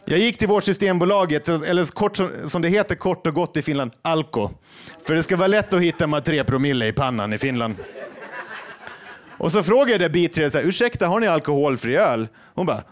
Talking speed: 195 wpm